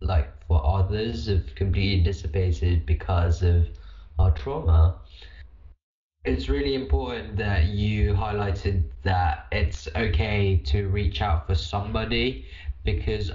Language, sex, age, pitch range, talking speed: English, male, 10-29, 80-100 Hz, 110 wpm